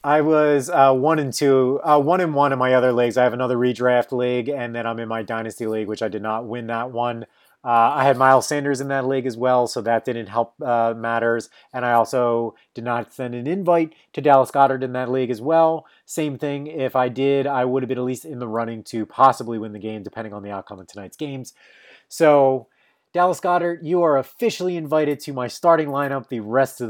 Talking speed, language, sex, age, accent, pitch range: 235 wpm, English, male, 30-49, American, 115-145 Hz